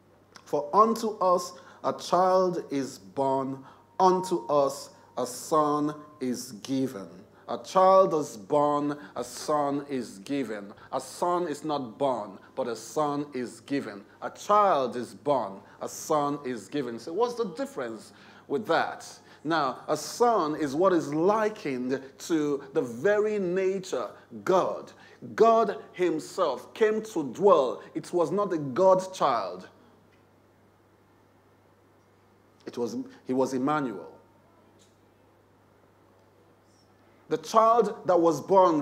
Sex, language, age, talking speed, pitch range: male, English, 30-49, 120 wpm, 120-190 Hz